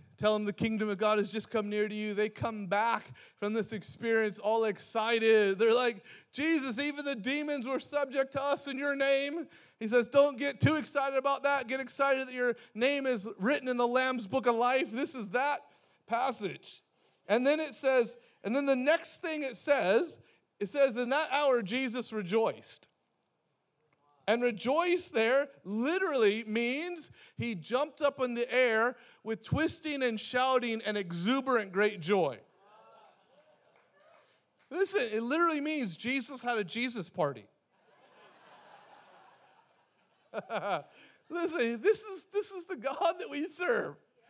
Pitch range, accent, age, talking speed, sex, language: 210-295 Hz, American, 30-49, 155 wpm, male, English